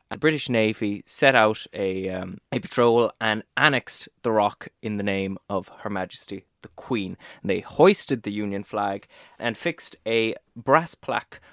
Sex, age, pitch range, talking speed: male, 20-39, 105-135 Hz, 160 wpm